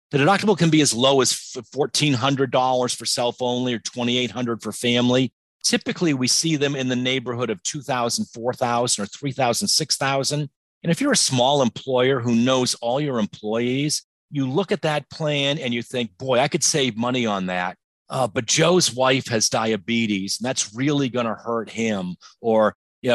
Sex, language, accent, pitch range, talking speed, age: male, English, American, 115-145 Hz, 175 wpm, 40-59